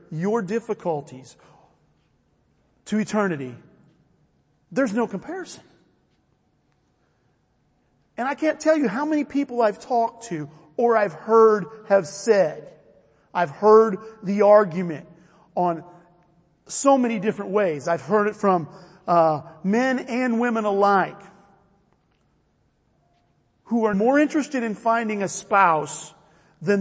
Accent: American